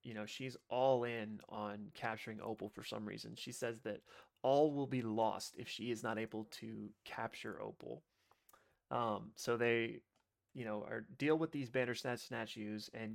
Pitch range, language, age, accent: 110-120 Hz, English, 30-49, American